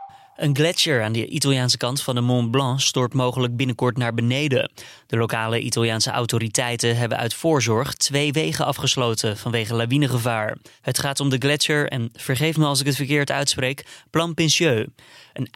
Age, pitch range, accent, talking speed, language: 20-39, 120-145 Hz, Dutch, 165 wpm, Dutch